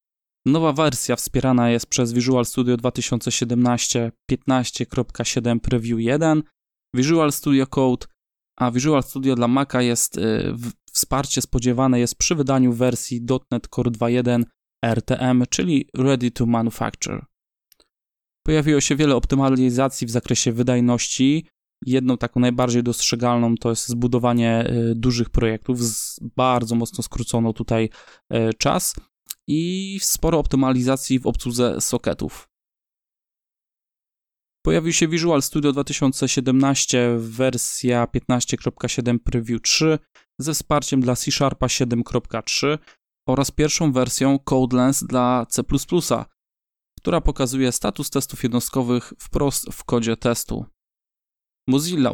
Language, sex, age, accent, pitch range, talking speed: Polish, male, 20-39, native, 120-140 Hz, 105 wpm